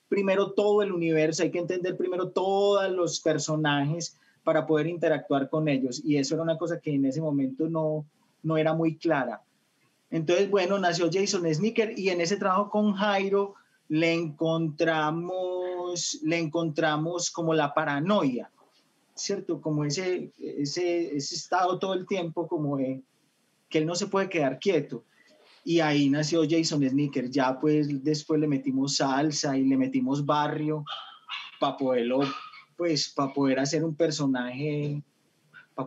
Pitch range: 140-170 Hz